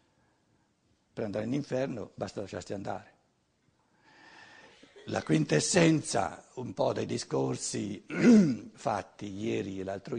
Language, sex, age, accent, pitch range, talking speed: Italian, male, 60-79, native, 140-190 Hz, 95 wpm